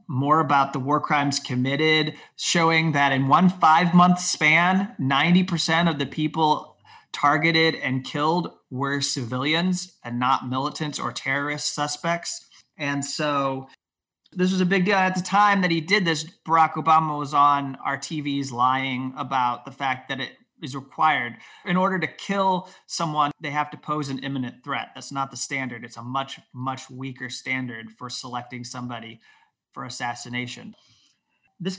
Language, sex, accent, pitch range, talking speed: English, male, American, 135-165 Hz, 155 wpm